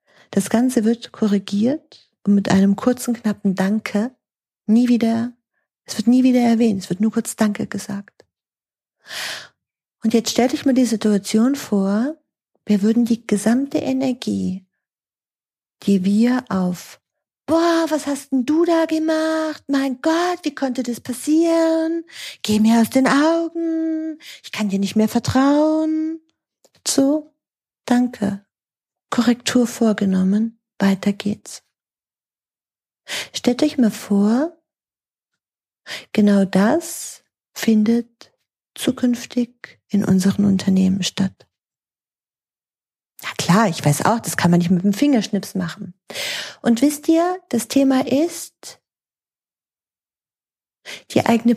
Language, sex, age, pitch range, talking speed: German, female, 40-59, 205-270 Hz, 120 wpm